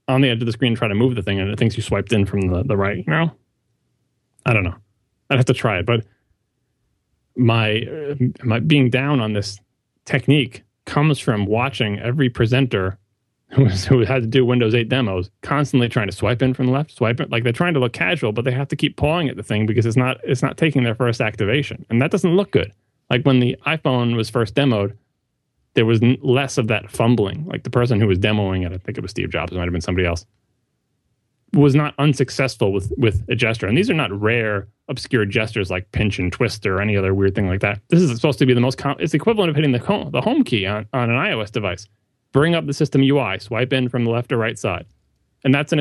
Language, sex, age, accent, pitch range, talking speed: English, male, 30-49, American, 105-135 Hz, 245 wpm